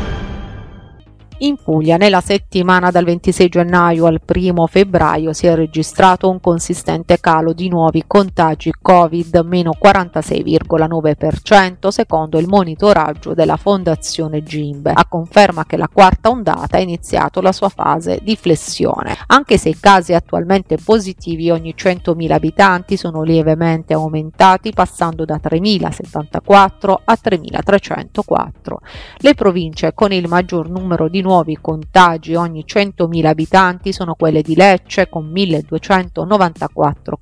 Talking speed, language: 120 wpm, Italian